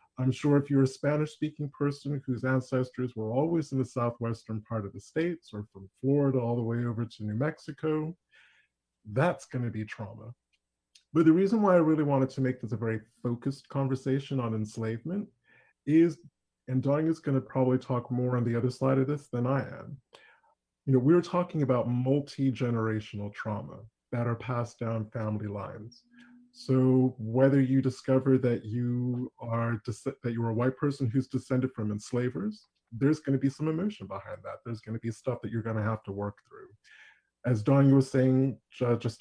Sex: male